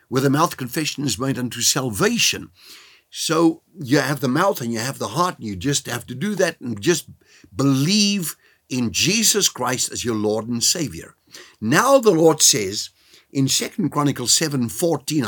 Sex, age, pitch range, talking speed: male, 60-79, 115-160 Hz, 175 wpm